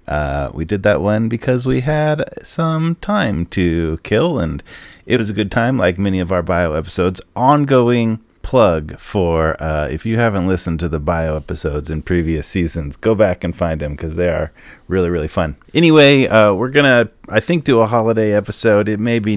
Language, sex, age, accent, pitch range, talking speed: English, male, 30-49, American, 90-120 Hz, 195 wpm